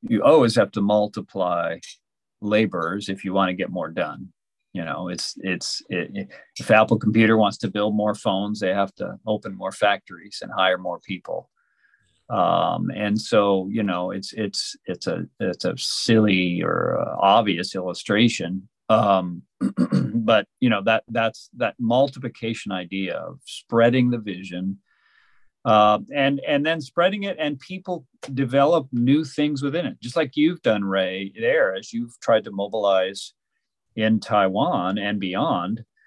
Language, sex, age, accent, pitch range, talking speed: English, male, 40-59, American, 100-130 Hz, 155 wpm